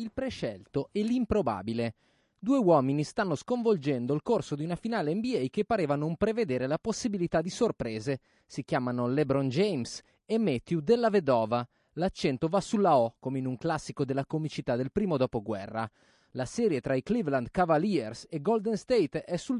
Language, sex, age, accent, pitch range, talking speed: Italian, male, 30-49, native, 130-190 Hz, 165 wpm